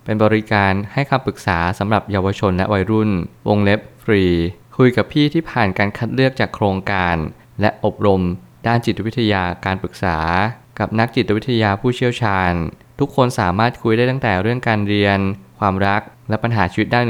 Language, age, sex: Thai, 20-39, male